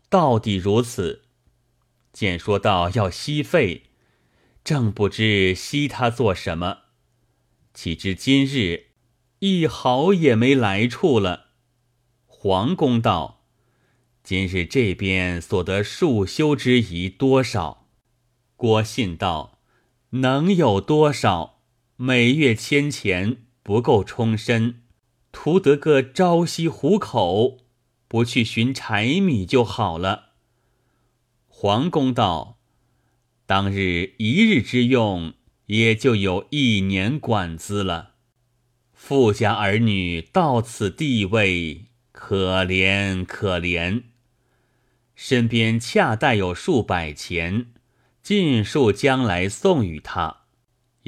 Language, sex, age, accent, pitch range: Chinese, male, 30-49, native, 95-125 Hz